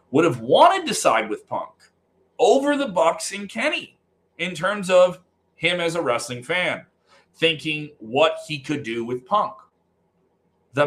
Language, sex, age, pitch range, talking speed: English, male, 40-59, 105-155 Hz, 155 wpm